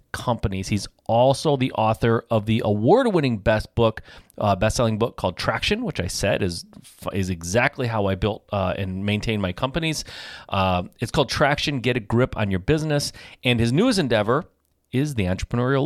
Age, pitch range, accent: 30-49, 100-135 Hz, American